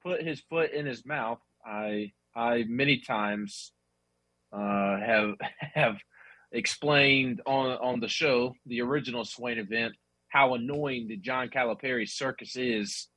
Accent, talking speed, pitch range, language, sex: American, 130 wpm, 105-150 Hz, English, male